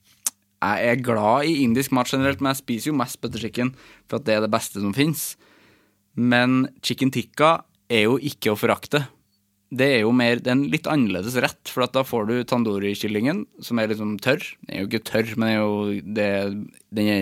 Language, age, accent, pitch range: English, 20-39, Norwegian, 100-130 Hz